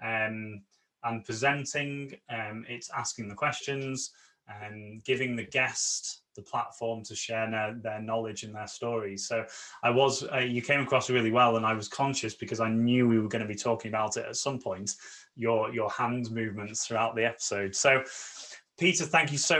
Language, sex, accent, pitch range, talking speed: English, male, British, 115-140 Hz, 185 wpm